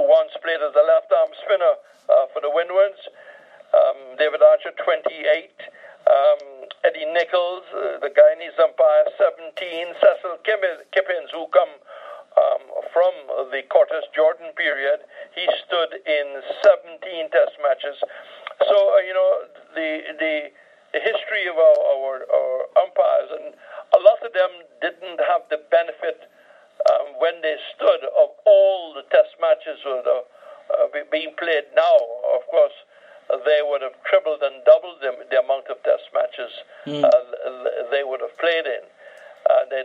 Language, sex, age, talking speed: English, male, 60-79, 145 wpm